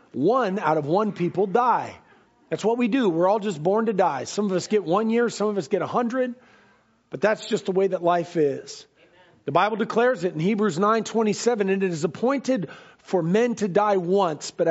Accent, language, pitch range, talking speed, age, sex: American, English, 200-265 Hz, 220 wpm, 40-59, male